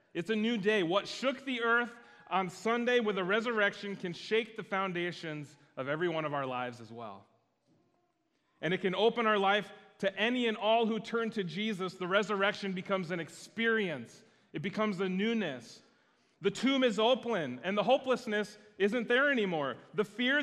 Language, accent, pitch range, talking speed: English, American, 165-220 Hz, 175 wpm